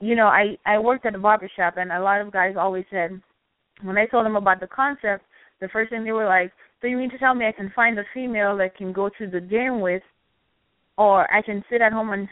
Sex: female